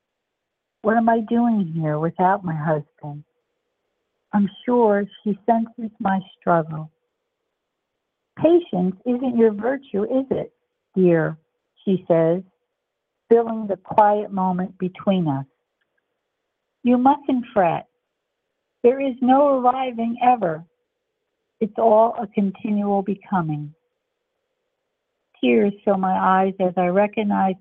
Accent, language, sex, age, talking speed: American, English, female, 60-79, 105 wpm